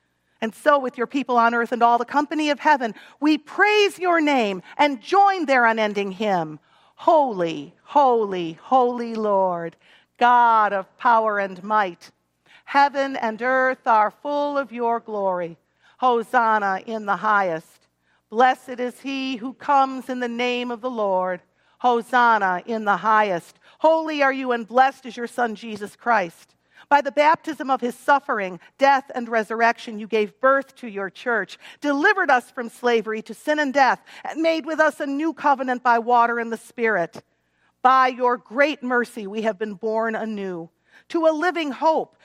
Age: 50-69